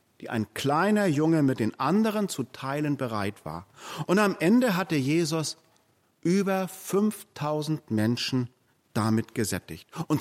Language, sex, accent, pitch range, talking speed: German, male, German, 120-180 Hz, 130 wpm